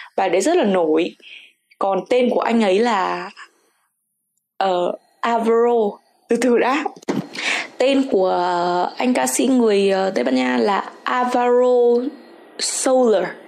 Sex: female